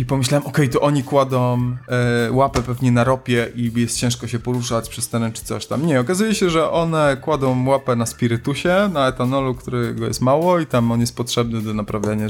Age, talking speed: 20-39, 210 wpm